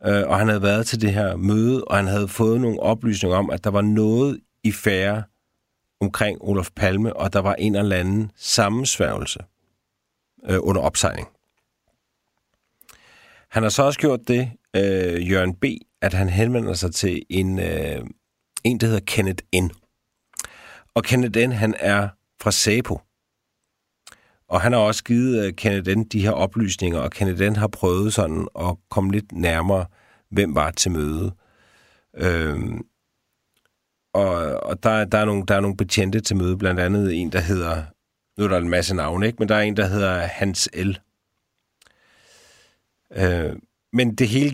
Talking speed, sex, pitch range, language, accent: 165 wpm, male, 95-110 Hz, Danish, native